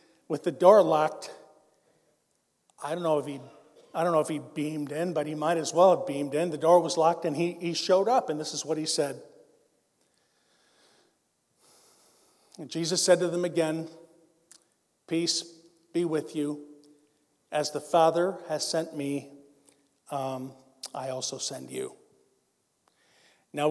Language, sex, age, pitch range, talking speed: English, male, 50-69, 155-180 Hz, 155 wpm